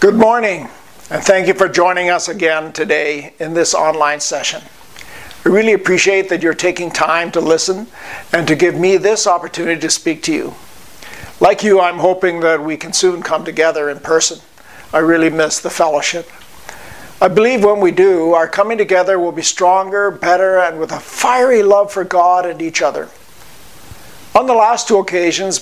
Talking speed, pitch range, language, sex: 180 wpm, 165-195 Hz, English, male